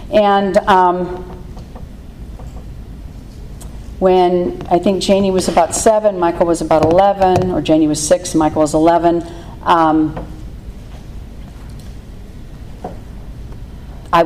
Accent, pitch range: American, 170-210 Hz